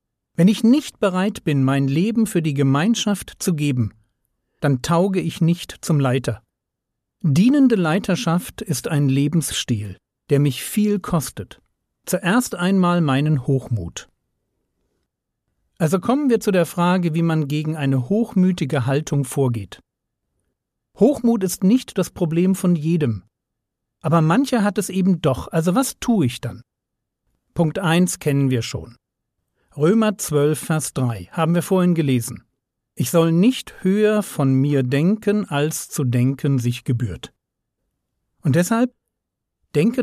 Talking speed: 135 wpm